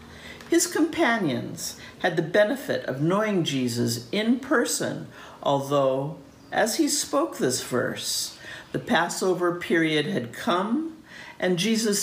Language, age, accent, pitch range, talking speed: English, 50-69, American, 135-225 Hz, 115 wpm